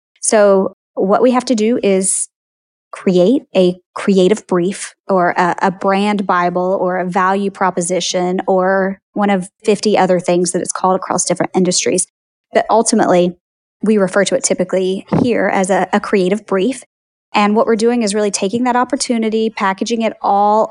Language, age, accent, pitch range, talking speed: English, 20-39, American, 185-220 Hz, 165 wpm